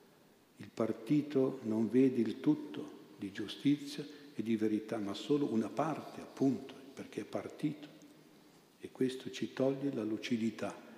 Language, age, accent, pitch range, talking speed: Italian, 50-69, native, 105-120 Hz, 135 wpm